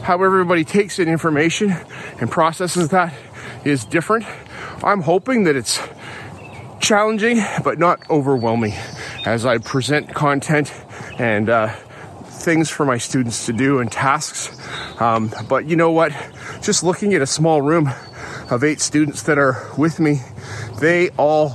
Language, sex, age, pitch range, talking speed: English, male, 30-49, 125-175 Hz, 145 wpm